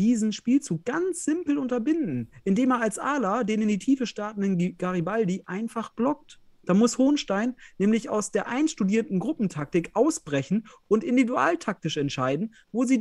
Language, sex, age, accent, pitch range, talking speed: German, male, 30-49, German, 170-240 Hz, 145 wpm